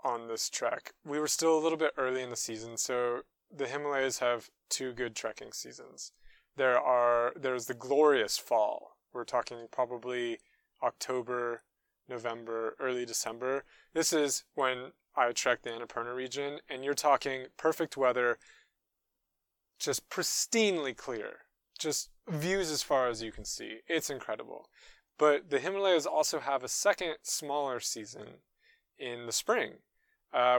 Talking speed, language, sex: 145 wpm, English, male